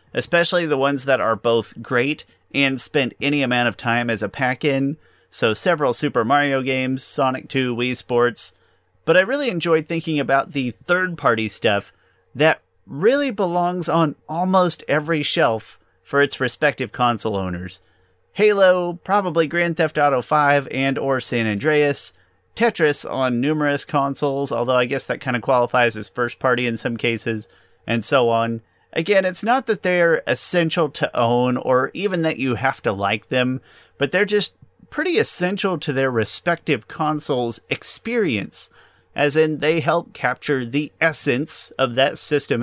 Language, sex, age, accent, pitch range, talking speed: English, male, 30-49, American, 120-165 Hz, 155 wpm